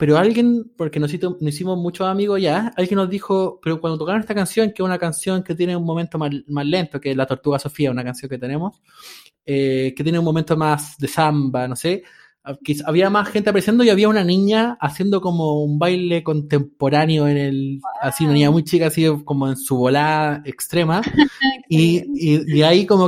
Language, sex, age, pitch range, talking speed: Spanish, male, 20-39, 150-195 Hz, 205 wpm